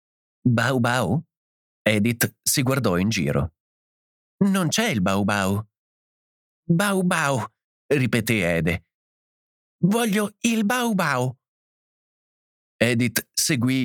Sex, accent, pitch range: male, native, 100-140 Hz